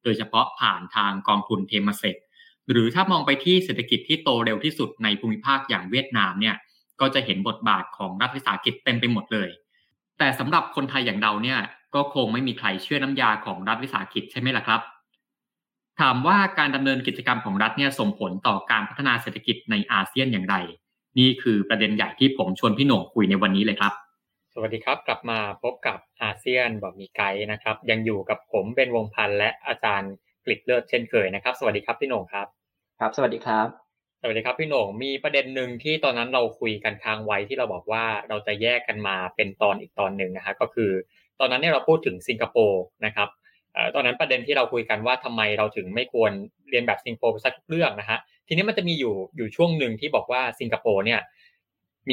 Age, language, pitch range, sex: 20-39, Thai, 105-135 Hz, male